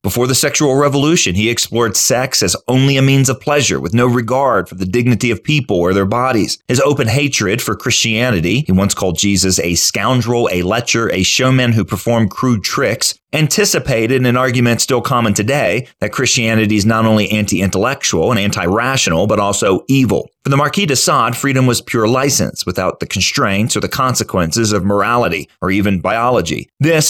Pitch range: 95-130 Hz